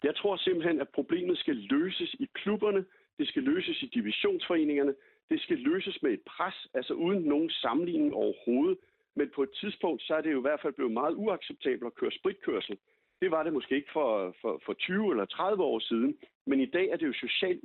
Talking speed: 210 wpm